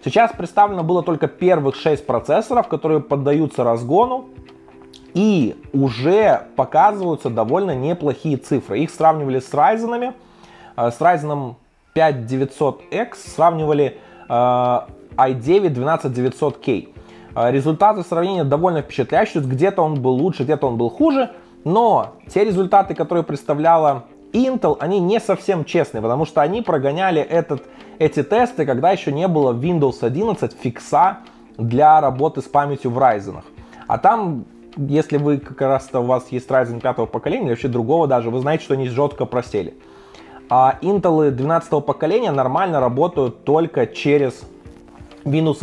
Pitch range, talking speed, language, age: 125-160 Hz, 130 wpm, Russian, 20-39